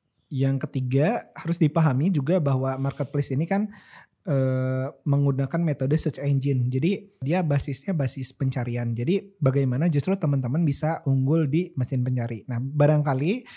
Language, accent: Indonesian, native